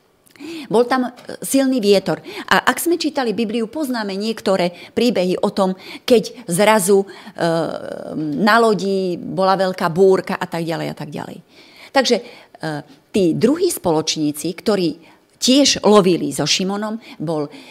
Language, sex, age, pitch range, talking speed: Slovak, female, 30-49, 175-255 Hz, 115 wpm